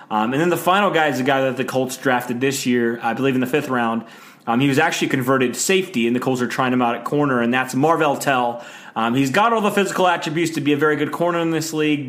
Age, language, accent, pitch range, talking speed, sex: 30-49, English, American, 125-155 Hz, 285 wpm, male